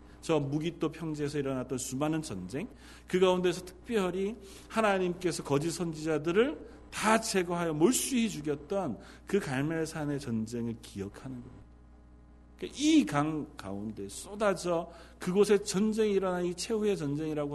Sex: male